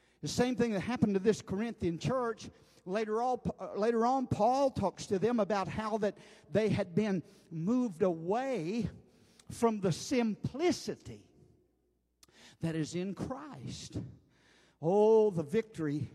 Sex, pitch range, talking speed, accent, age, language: male, 155-205 Hz, 130 wpm, American, 50-69, English